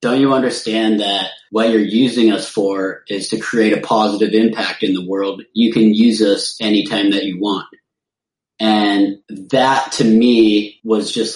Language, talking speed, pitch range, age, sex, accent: English, 170 wpm, 95-115 Hz, 30-49, male, American